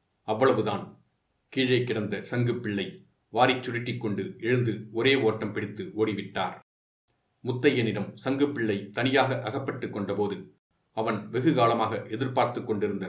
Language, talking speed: Tamil, 90 wpm